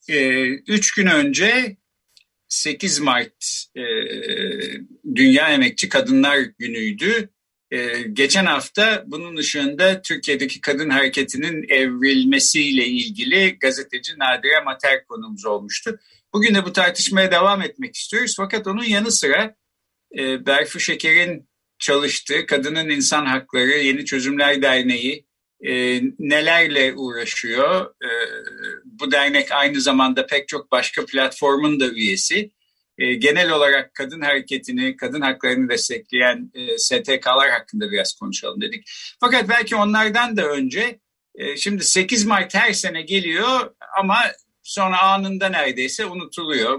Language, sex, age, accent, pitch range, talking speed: Turkish, male, 50-69, native, 140-225 Hz, 120 wpm